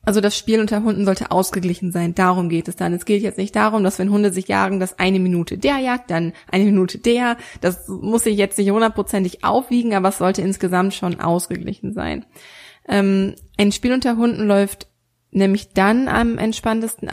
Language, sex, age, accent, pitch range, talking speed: German, female, 20-39, German, 190-225 Hz, 190 wpm